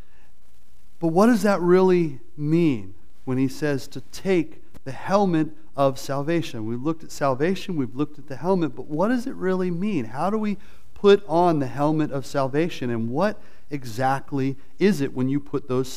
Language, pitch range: English, 135-175 Hz